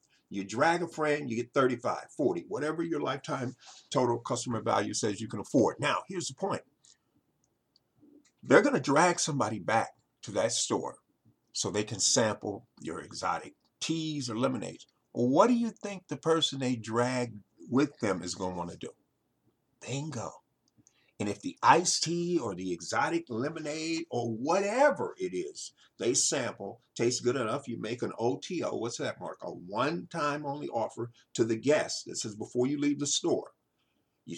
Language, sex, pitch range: English, male, 115-165 Hz